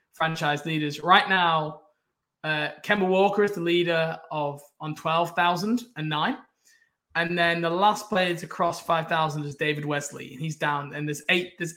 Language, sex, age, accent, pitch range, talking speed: English, male, 20-39, British, 155-205 Hz, 175 wpm